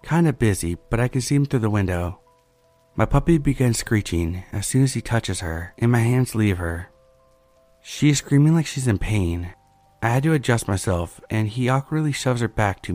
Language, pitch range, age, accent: English, 95-130 Hz, 30-49, American